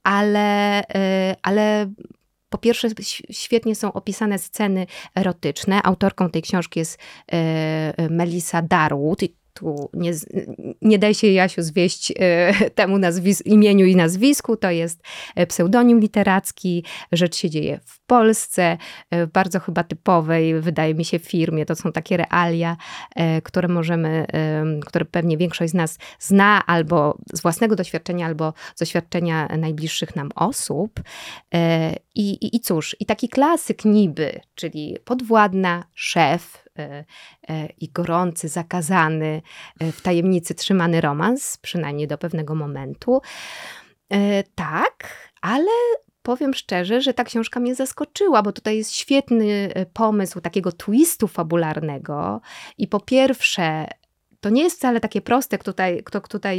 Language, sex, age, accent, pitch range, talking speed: Polish, female, 20-39, native, 165-210 Hz, 125 wpm